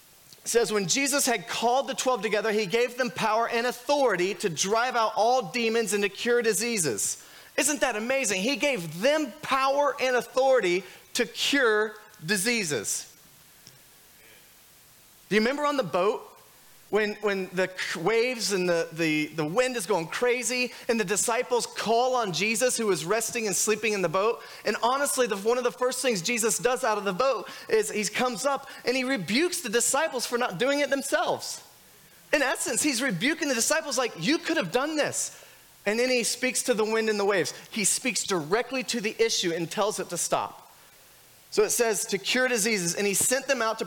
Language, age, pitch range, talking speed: English, 30-49, 210-255 Hz, 195 wpm